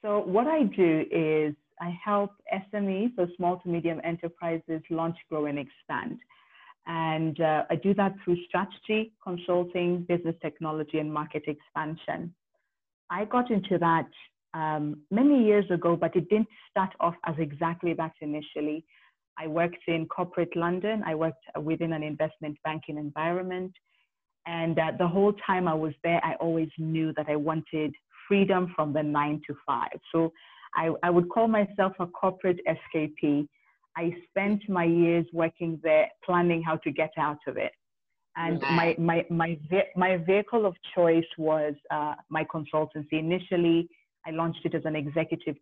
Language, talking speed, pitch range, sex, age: English, 160 wpm, 155-180 Hz, female, 30-49